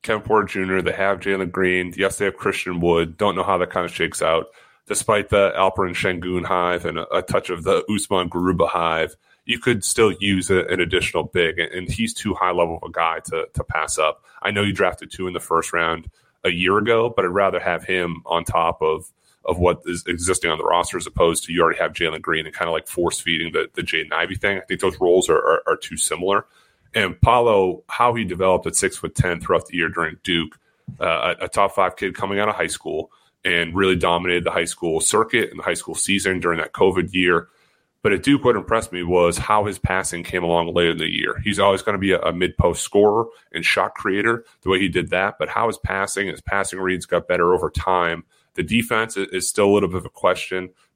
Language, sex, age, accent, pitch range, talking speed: English, male, 30-49, American, 90-100 Hz, 235 wpm